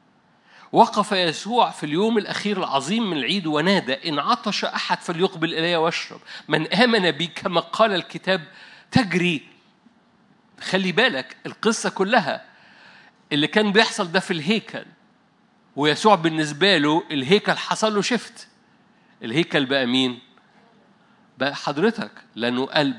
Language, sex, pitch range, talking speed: Arabic, male, 160-215 Hz, 115 wpm